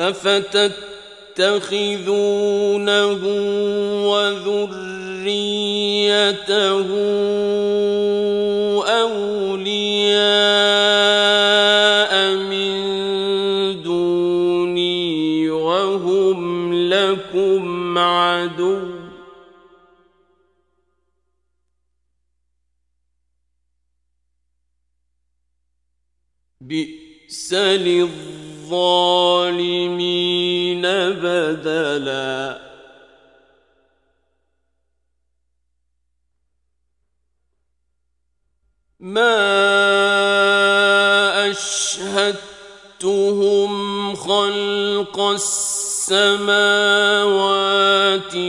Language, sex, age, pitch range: Turkish, male, 50-69, 165-200 Hz